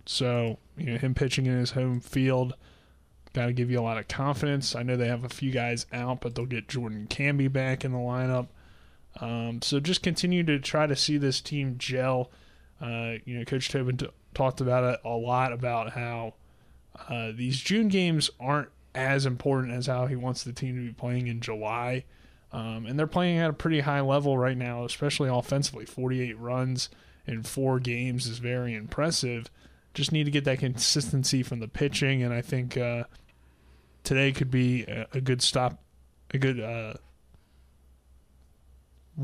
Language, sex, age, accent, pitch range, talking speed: English, male, 20-39, American, 115-135 Hz, 180 wpm